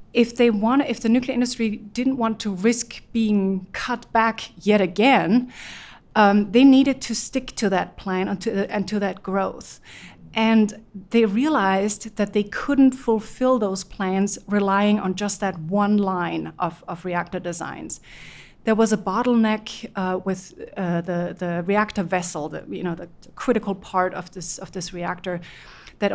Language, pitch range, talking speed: English, 185-225 Hz, 165 wpm